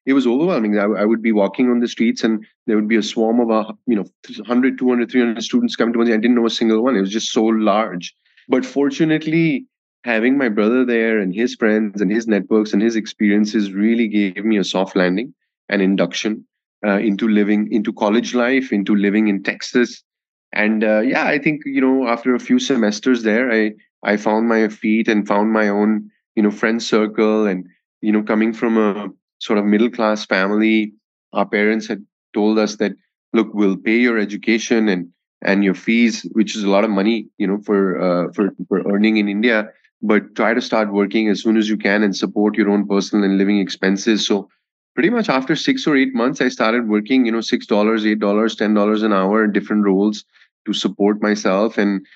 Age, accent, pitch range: 20-39, Indian, 100-115 Hz